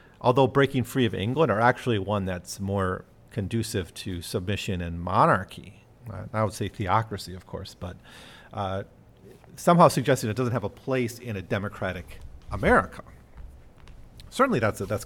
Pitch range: 95-125 Hz